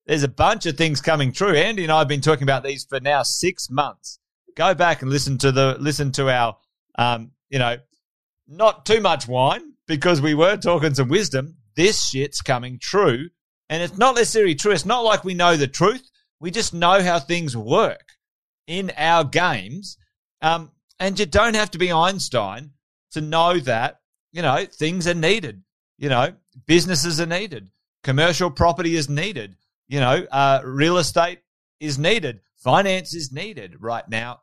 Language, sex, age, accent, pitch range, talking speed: English, male, 30-49, Australian, 135-175 Hz, 180 wpm